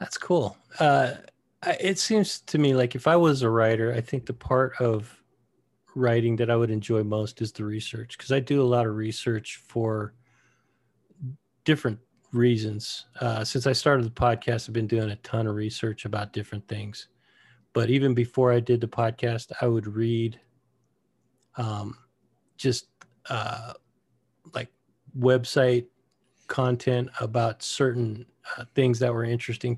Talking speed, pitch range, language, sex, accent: 155 wpm, 115-130 Hz, English, male, American